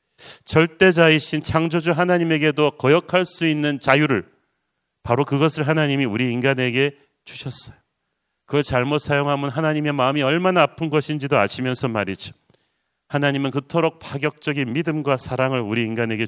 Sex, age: male, 40-59